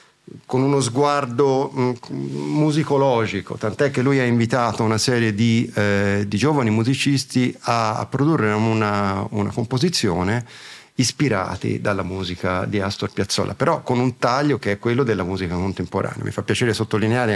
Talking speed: 145 wpm